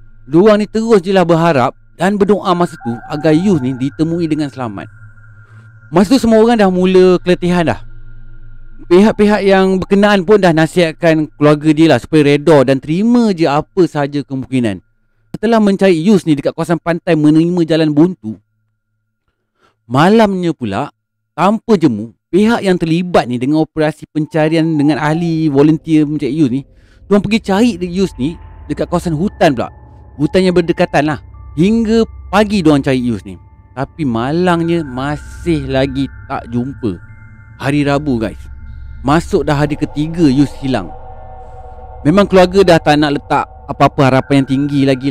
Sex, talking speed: male, 150 wpm